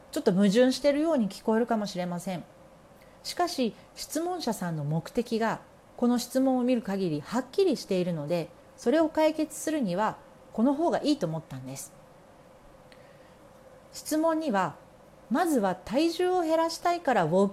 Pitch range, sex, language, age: 180-280 Hz, female, Japanese, 40-59